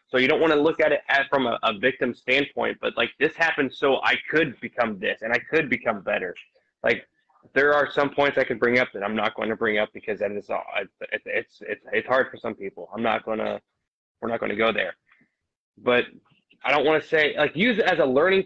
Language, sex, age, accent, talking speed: English, male, 20-39, American, 245 wpm